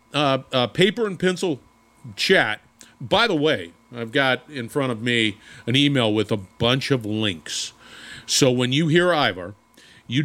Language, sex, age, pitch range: English, male, 40-59, 110-140 Hz